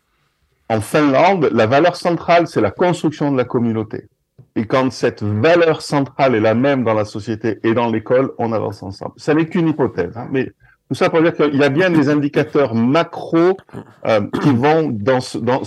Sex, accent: male, French